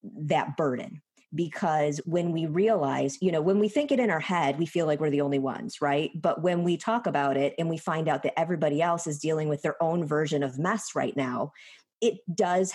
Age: 30-49